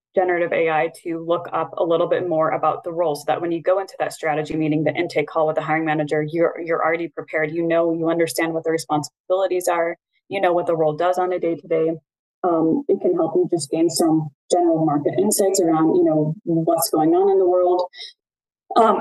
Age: 20-39